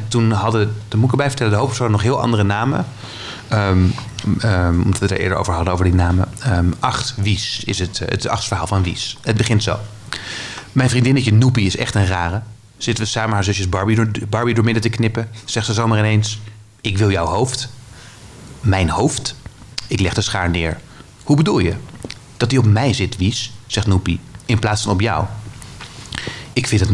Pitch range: 100-125 Hz